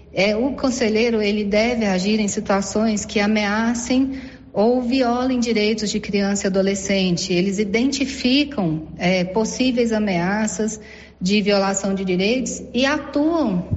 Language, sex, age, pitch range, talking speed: Portuguese, female, 40-59, 190-230 Hz, 110 wpm